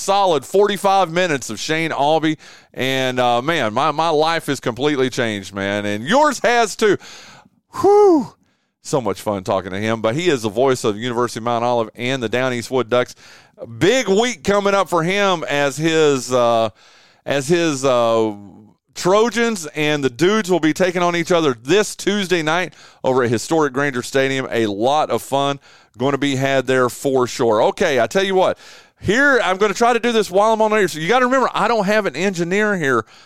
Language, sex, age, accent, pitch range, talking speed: English, male, 30-49, American, 130-195 Hz, 205 wpm